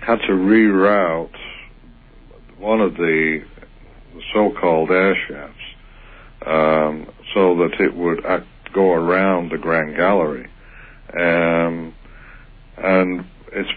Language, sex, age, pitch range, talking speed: English, male, 60-79, 80-95 Hz, 100 wpm